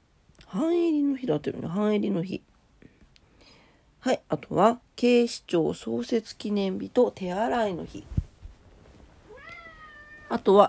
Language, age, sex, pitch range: Japanese, 40-59, female, 165-255 Hz